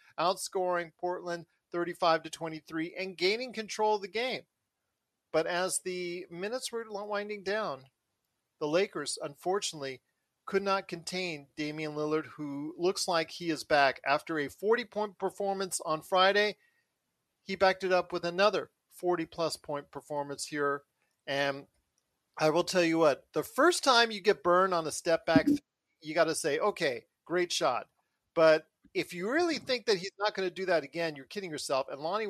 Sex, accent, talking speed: male, American, 170 wpm